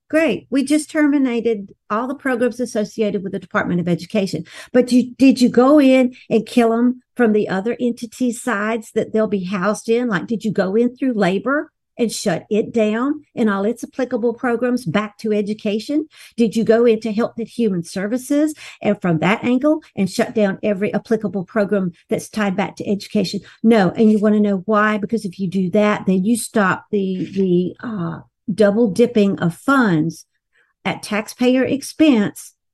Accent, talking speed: American, 180 wpm